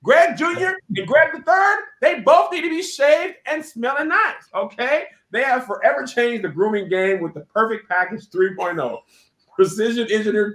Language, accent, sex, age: English, American, male, 30-49